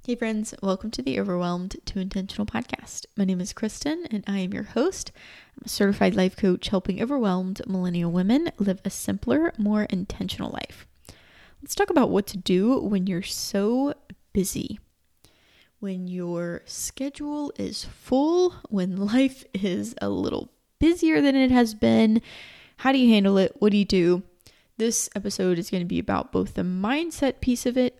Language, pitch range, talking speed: English, 185-245 Hz, 170 wpm